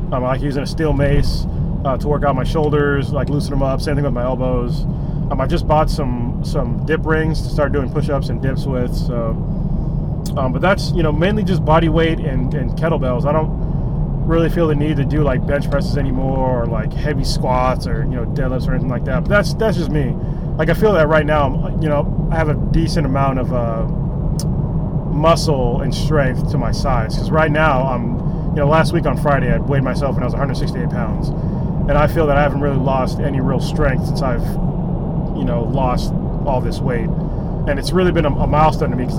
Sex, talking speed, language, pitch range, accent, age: male, 225 wpm, English, 140-160 Hz, American, 20-39